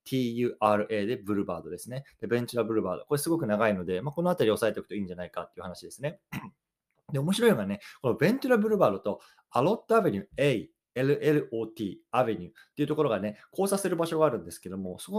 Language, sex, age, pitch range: Japanese, male, 20-39, 105-155 Hz